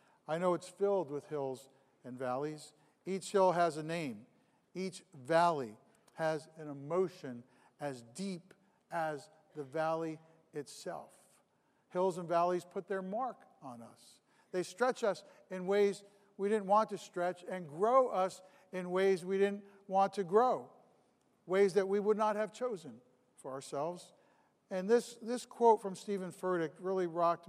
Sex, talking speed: male, 155 wpm